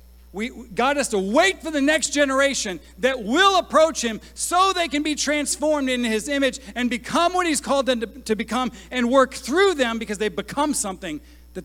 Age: 40-59